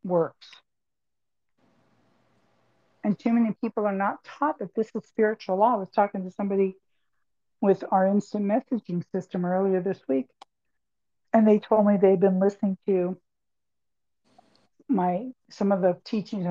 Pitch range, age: 185-225 Hz, 60-79